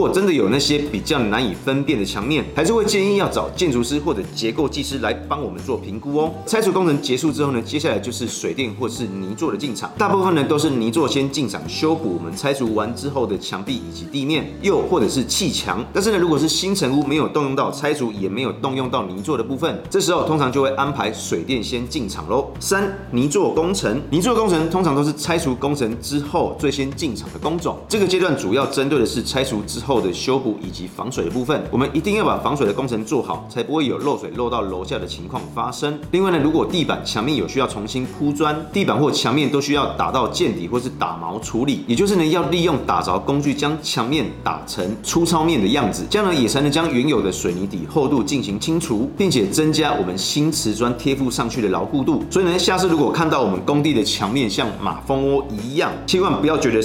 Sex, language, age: male, Chinese, 30-49